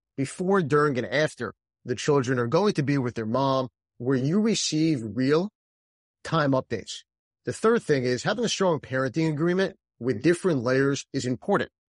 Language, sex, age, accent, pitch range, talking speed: English, male, 30-49, American, 125-155 Hz, 165 wpm